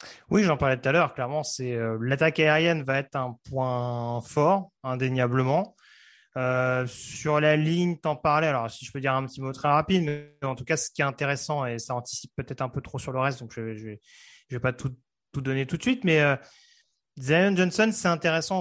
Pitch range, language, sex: 125-155 Hz, French, male